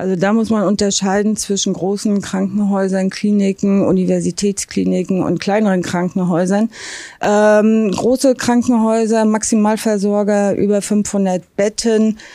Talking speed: 95 wpm